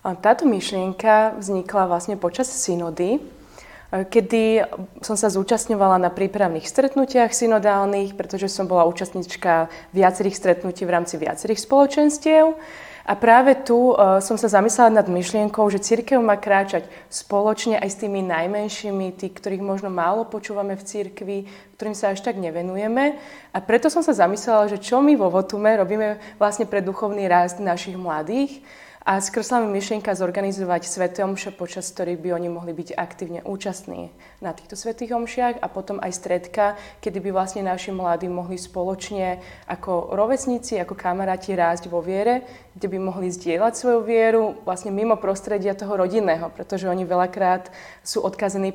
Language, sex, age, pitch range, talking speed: Slovak, female, 20-39, 180-215 Hz, 155 wpm